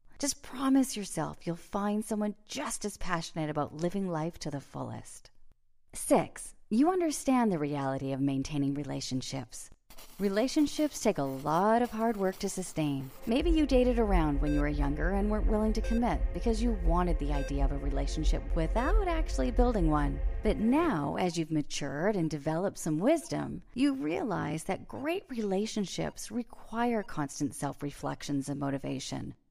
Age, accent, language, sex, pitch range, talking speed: 40-59, American, English, female, 150-250 Hz, 155 wpm